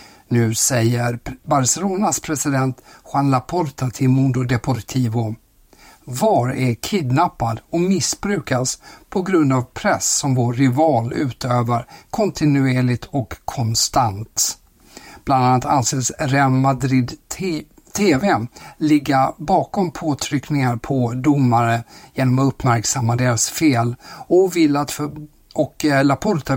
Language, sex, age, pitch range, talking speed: Swedish, male, 60-79, 120-150 Hz, 110 wpm